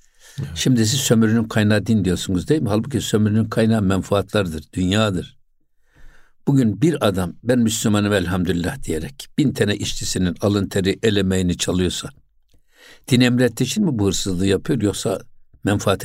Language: Turkish